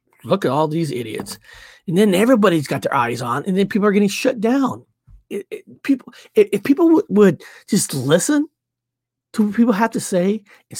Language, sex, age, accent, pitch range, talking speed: English, male, 30-49, American, 135-215 Hz, 200 wpm